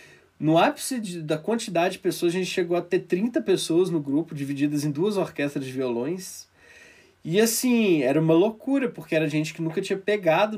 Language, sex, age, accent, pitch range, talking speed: Portuguese, male, 20-39, Brazilian, 145-190 Hz, 195 wpm